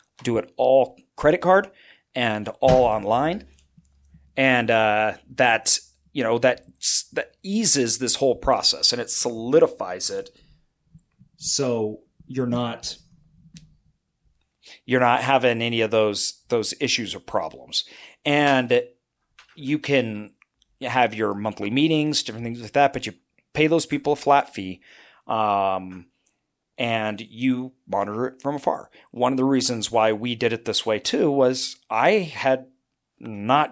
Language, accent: English, American